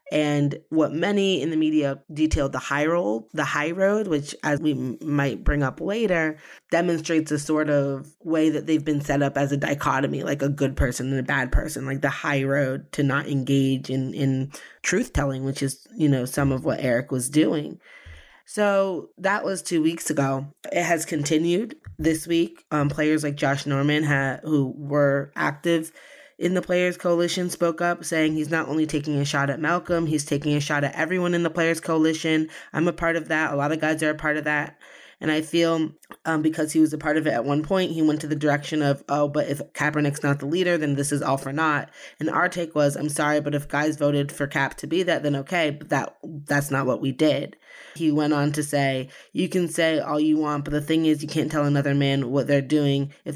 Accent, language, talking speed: American, English, 225 wpm